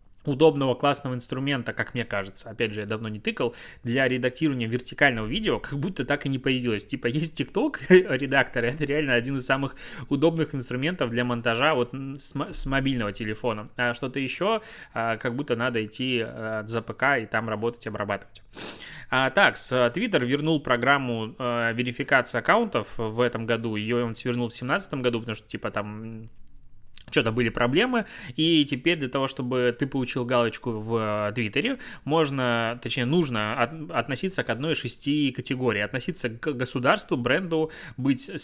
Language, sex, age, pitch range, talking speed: Russian, male, 20-39, 120-145 Hz, 160 wpm